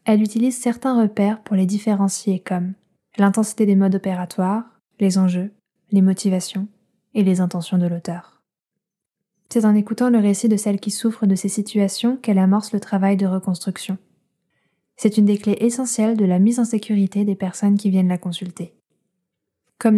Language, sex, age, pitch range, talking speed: French, female, 10-29, 190-220 Hz, 170 wpm